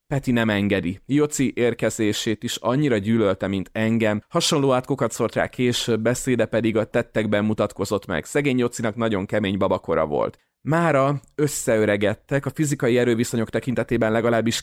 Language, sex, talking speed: Hungarian, male, 140 wpm